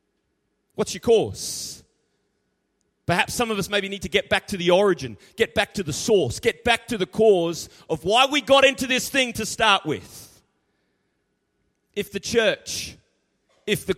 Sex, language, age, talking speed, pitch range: male, English, 30-49, 170 wpm, 170-220 Hz